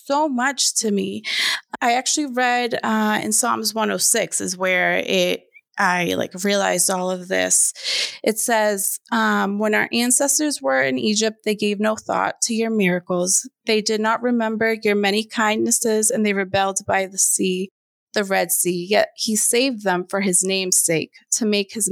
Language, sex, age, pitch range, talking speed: English, female, 30-49, 190-235 Hz, 170 wpm